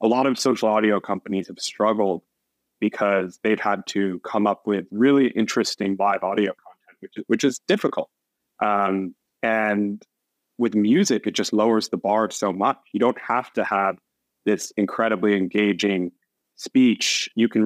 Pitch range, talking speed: 100-120 Hz, 155 wpm